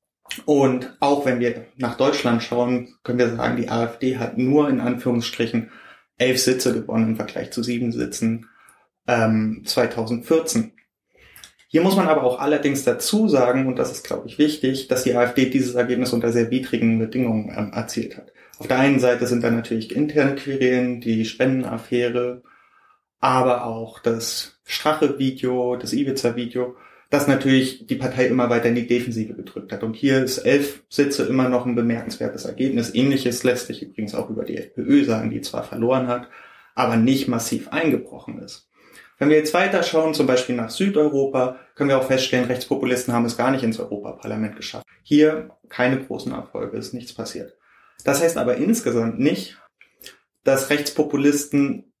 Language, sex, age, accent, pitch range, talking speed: German, male, 30-49, German, 120-140 Hz, 165 wpm